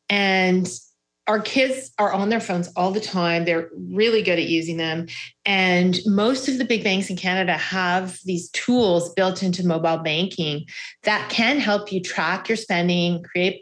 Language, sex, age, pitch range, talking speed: English, female, 30-49, 175-215 Hz, 170 wpm